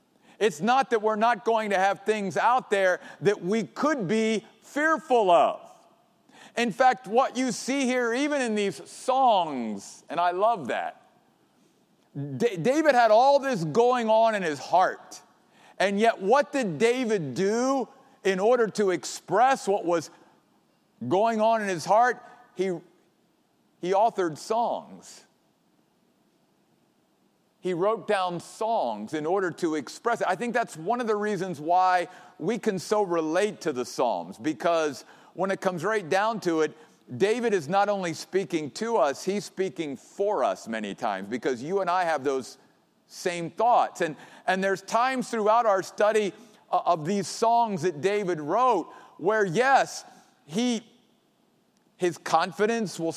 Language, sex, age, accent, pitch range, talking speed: English, male, 50-69, American, 180-235 Hz, 150 wpm